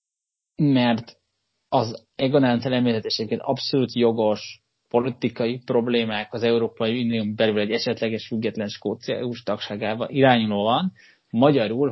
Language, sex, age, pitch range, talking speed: Hungarian, male, 30-49, 105-125 Hz, 95 wpm